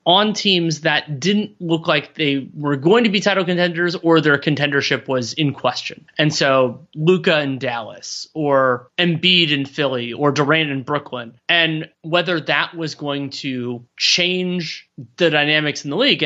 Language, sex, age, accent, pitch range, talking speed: English, male, 30-49, American, 140-170 Hz, 160 wpm